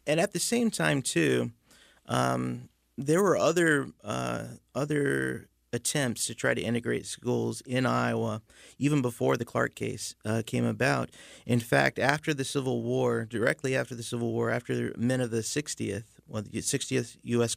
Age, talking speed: 30-49, 165 wpm